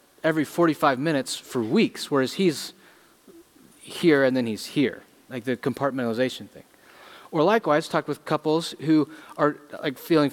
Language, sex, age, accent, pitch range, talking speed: English, male, 30-49, American, 130-160 Hz, 145 wpm